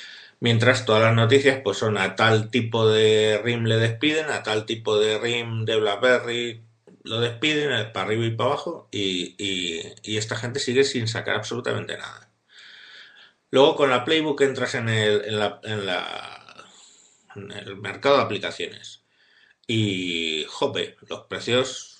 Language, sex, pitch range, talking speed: Spanish, male, 105-130 Hz, 155 wpm